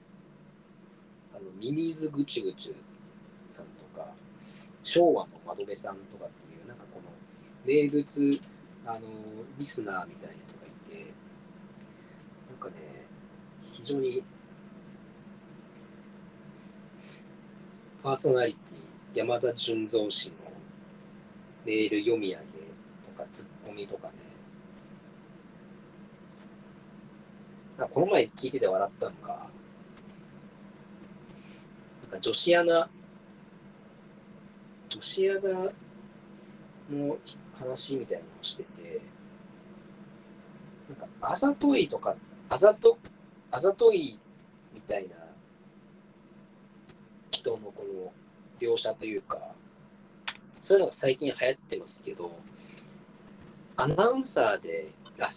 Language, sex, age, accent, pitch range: Japanese, male, 40-59, native, 185-200 Hz